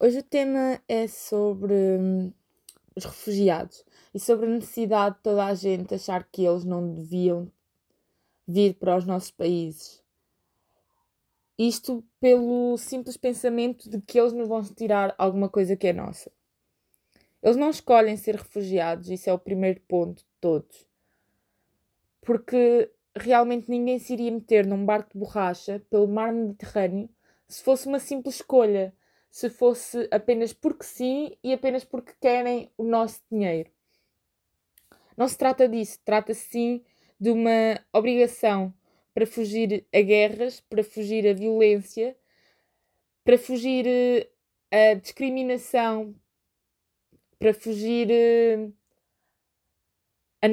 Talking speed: 130 wpm